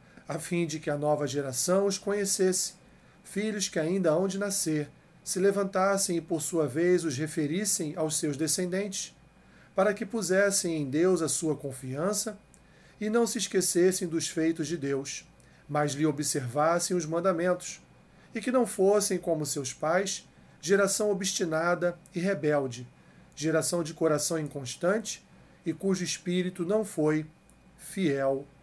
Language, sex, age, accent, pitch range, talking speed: Portuguese, male, 40-59, Brazilian, 150-185 Hz, 140 wpm